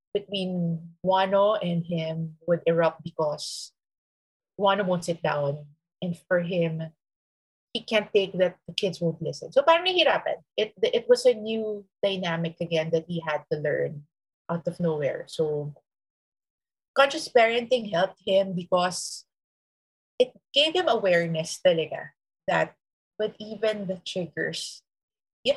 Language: English